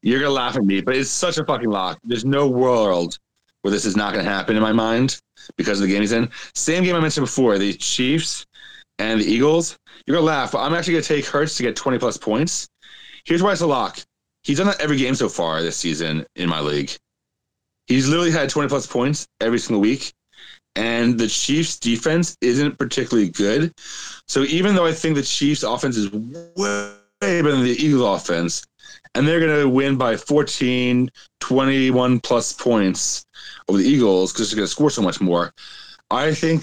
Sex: male